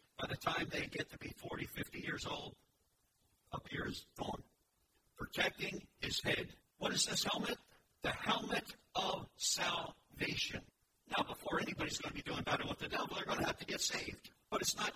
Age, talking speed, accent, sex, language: 50-69, 180 wpm, American, male, English